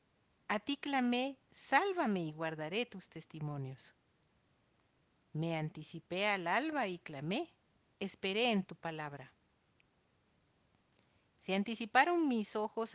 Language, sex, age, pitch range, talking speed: Spanish, female, 50-69, 160-225 Hz, 100 wpm